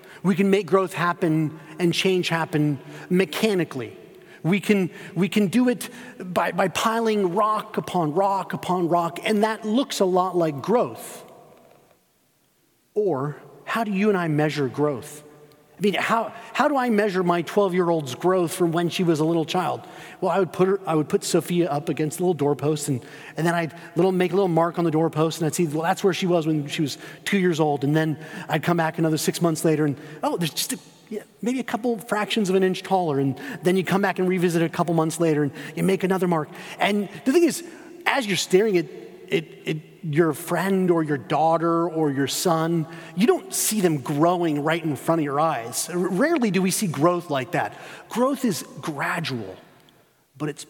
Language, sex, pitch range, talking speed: English, male, 155-195 Hz, 210 wpm